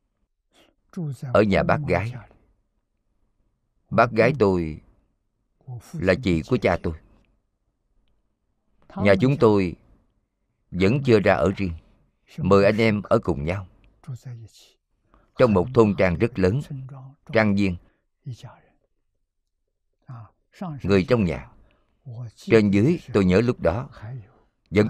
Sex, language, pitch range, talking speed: male, Vietnamese, 95-120 Hz, 105 wpm